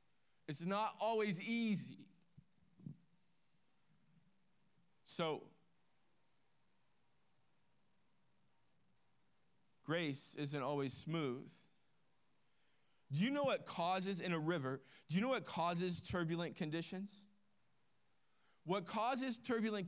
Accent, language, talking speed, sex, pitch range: American, English, 80 wpm, male, 145-185 Hz